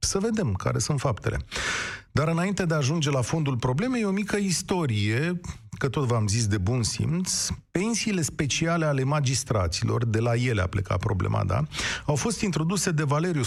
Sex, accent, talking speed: male, native, 175 wpm